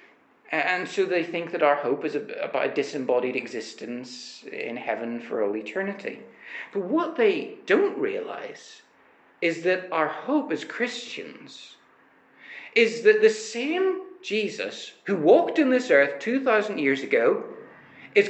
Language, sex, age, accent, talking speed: English, male, 40-59, British, 140 wpm